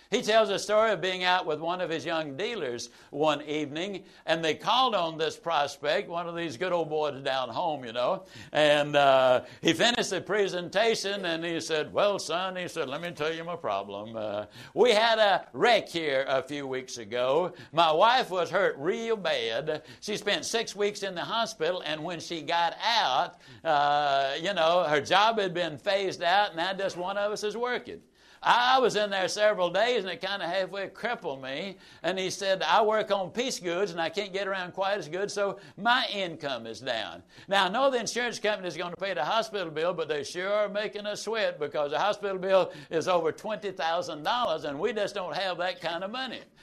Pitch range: 160-205 Hz